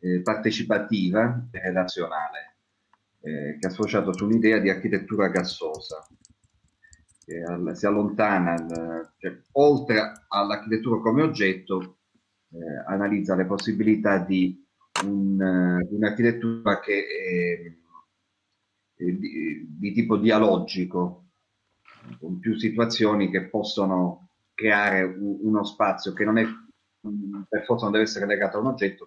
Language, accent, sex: Italian, native, male